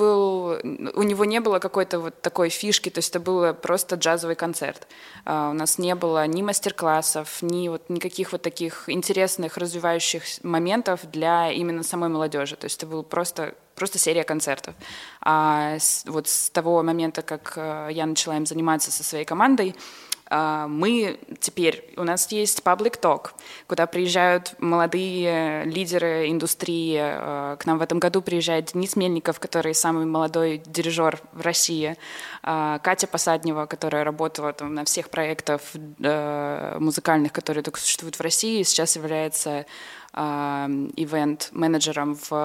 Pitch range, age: 160-185 Hz, 20-39